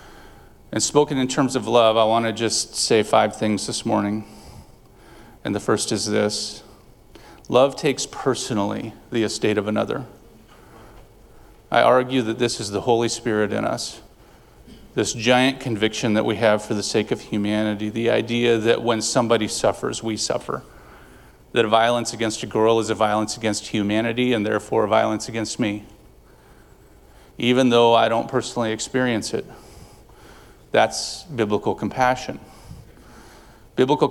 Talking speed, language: 145 wpm, English